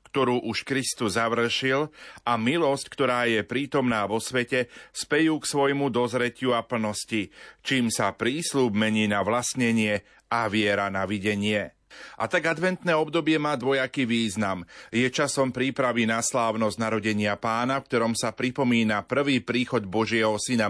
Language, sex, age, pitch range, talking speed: Slovak, male, 40-59, 110-135 Hz, 140 wpm